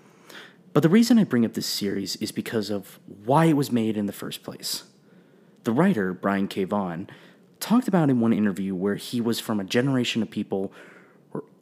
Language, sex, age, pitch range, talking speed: English, male, 30-49, 105-165 Hz, 195 wpm